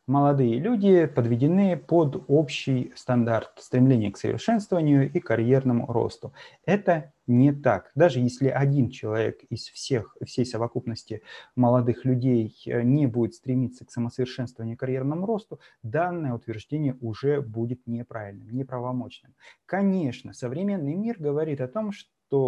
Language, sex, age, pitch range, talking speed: Russian, male, 30-49, 120-145 Hz, 115 wpm